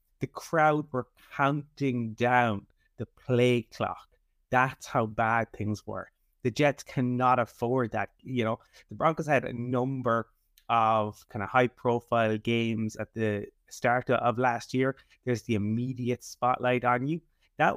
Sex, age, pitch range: male, 30-49, 110-135 Hz